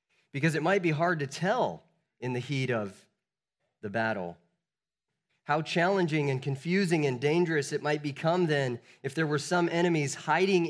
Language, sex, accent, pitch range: English, male, American, 120-160 Hz